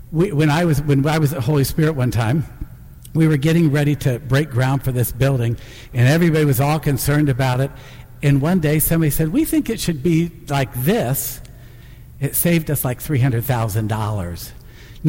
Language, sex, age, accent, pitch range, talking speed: English, male, 60-79, American, 120-165 Hz, 185 wpm